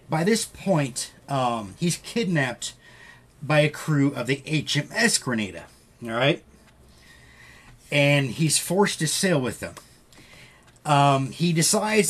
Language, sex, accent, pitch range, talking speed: English, male, American, 130-175 Hz, 125 wpm